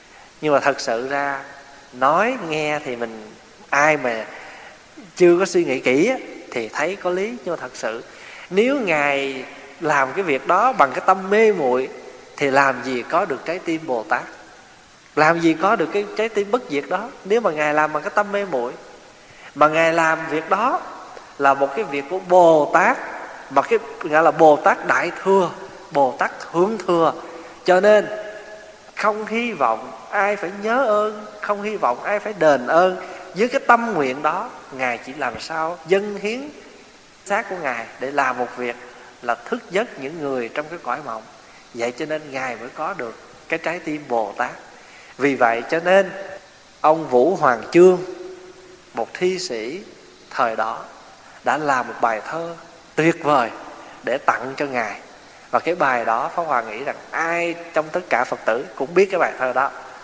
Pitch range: 140-200 Hz